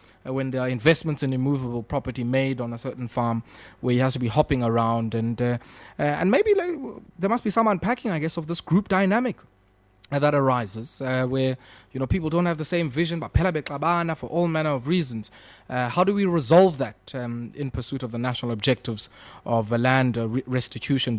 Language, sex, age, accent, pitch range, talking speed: English, male, 20-39, South African, 120-145 Hz, 210 wpm